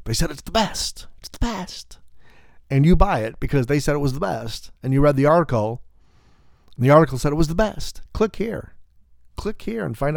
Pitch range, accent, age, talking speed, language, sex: 95-140 Hz, American, 40-59, 225 wpm, English, male